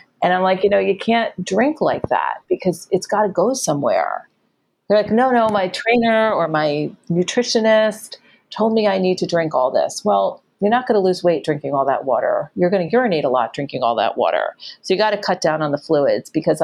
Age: 40-59